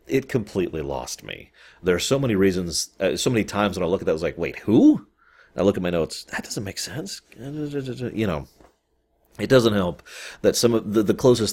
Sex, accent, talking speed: male, American, 230 wpm